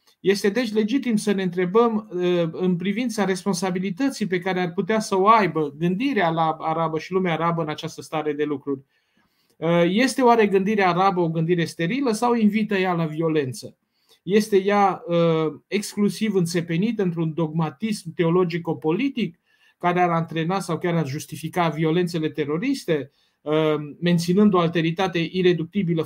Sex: male